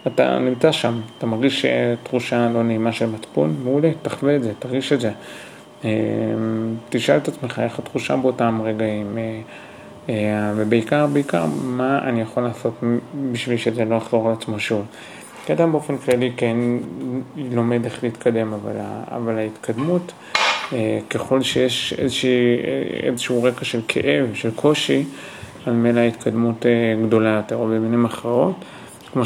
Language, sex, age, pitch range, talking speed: Hebrew, male, 30-49, 110-125 Hz, 135 wpm